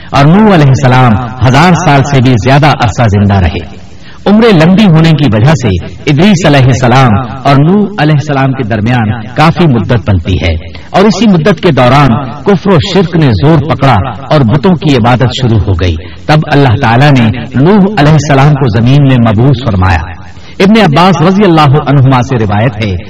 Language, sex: Urdu, male